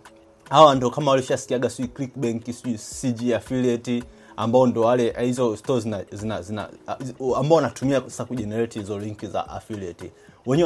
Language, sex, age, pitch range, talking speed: Swahili, male, 30-49, 110-135 Hz, 160 wpm